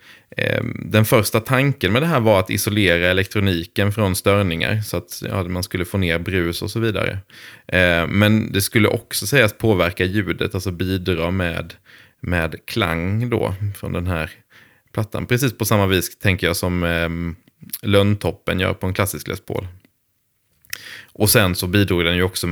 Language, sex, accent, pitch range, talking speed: English, male, Swedish, 90-105 Hz, 165 wpm